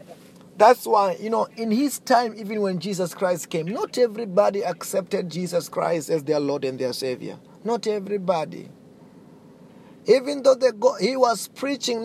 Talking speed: 160 wpm